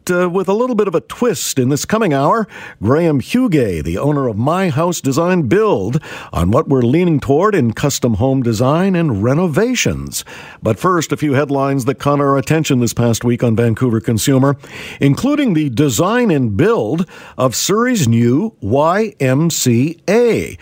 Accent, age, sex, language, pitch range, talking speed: American, 50-69, male, English, 120-175 Hz, 165 wpm